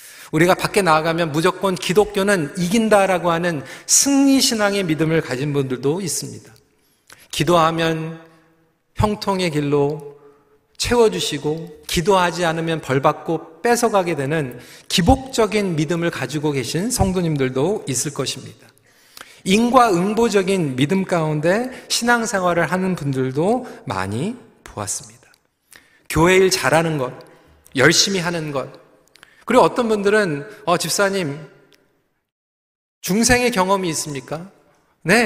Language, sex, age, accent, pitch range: Korean, male, 40-59, native, 150-210 Hz